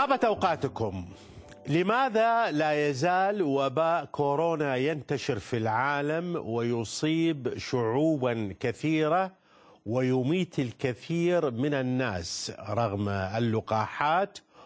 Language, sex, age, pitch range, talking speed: Arabic, male, 50-69, 110-155 Hz, 80 wpm